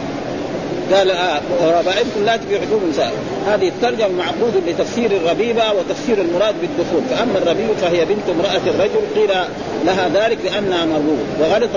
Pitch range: 175-225 Hz